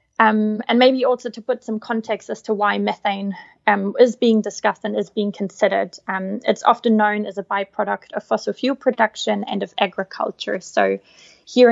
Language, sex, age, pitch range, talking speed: English, female, 20-39, 195-220 Hz, 185 wpm